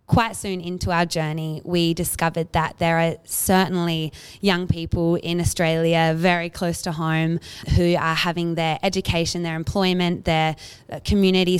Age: 20-39